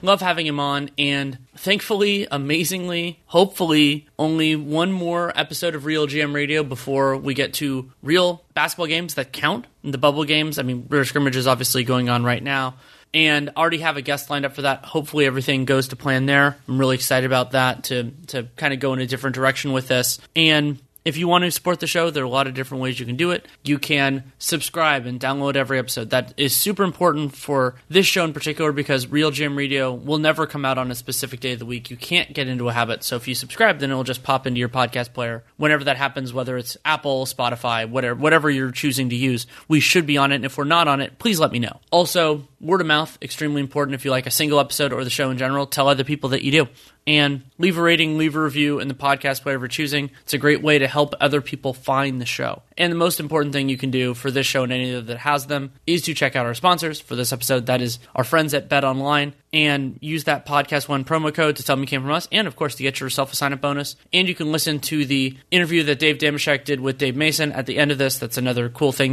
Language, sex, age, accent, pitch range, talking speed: English, male, 30-49, American, 130-155 Hz, 255 wpm